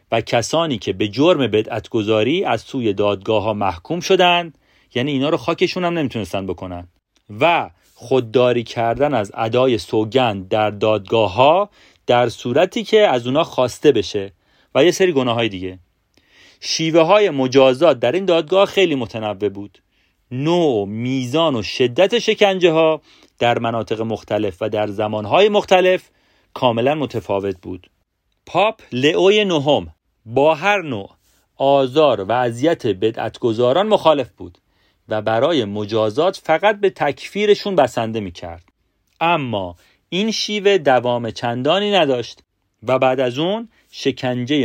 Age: 40-59